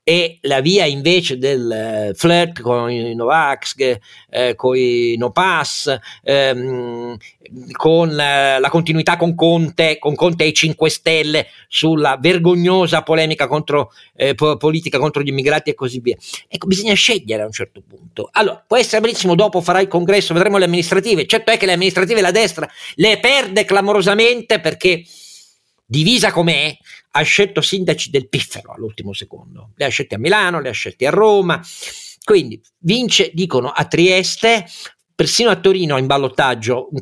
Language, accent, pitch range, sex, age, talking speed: Italian, native, 125-180 Hz, male, 50-69, 150 wpm